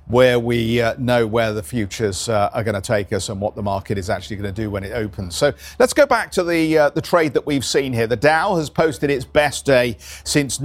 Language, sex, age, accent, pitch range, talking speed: English, male, 50-69, British, 115-150 Hz, 250 wpm